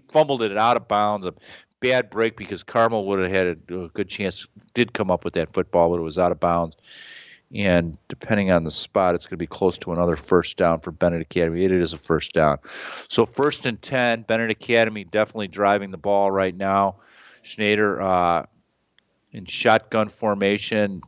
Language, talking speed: English, 190 wpm